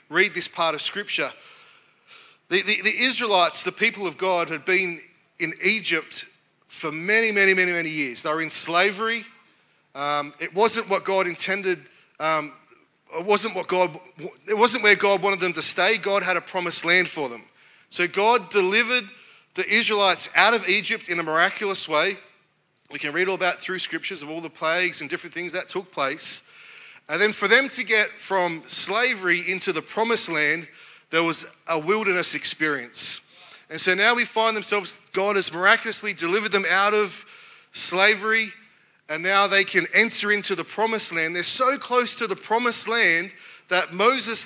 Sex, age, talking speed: male, 30-49, 175 wpm